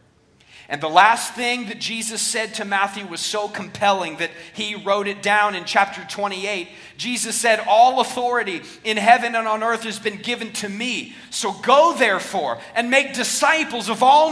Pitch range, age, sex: 220-275 Hz, 40-59, male